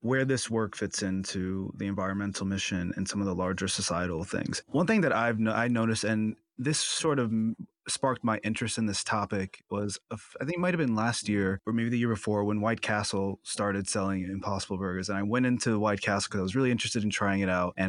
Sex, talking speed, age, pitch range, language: male, 230 wpm, 20-39, 100-120 Hz, English